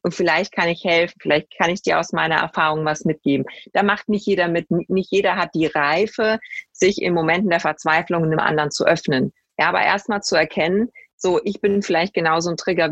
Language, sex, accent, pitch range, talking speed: German, female, German, 160-210 Hz, 220 wpm